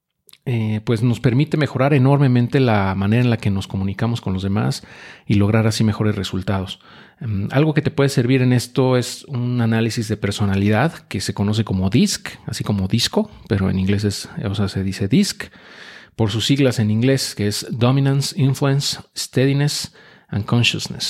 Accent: Mexican